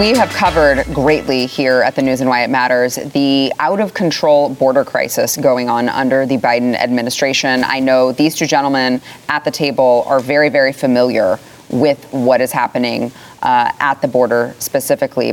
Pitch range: 130-170 Hz